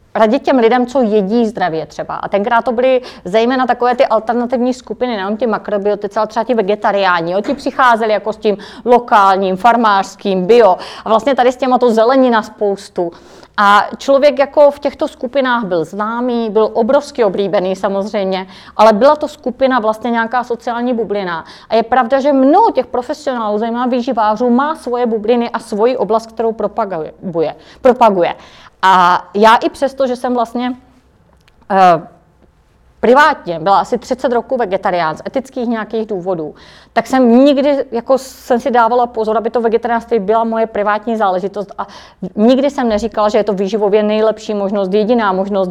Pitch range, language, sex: 205-250 Hz, Czech, female